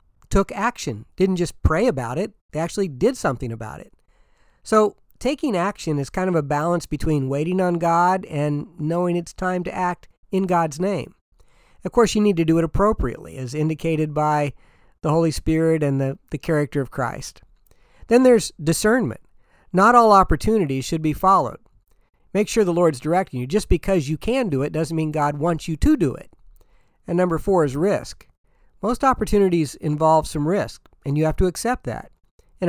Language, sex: English, male